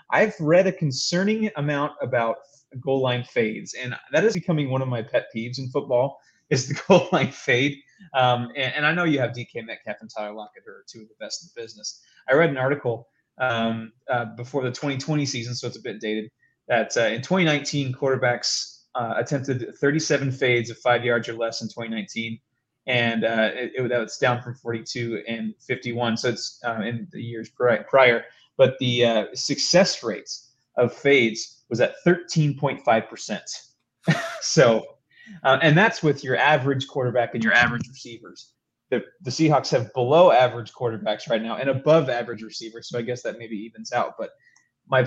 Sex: male